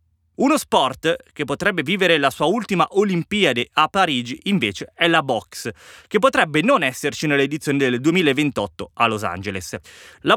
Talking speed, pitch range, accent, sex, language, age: 150 wpm, 125-175 Hz, native, male, Italian, 20-39